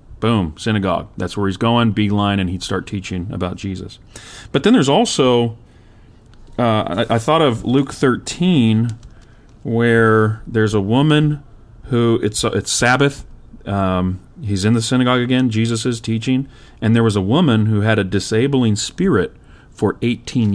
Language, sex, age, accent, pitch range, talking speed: English, male, 40-59, American, 100-120 Hz, 155 wpm